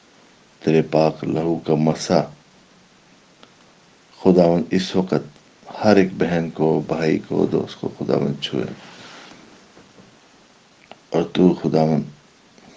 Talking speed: 95 wpm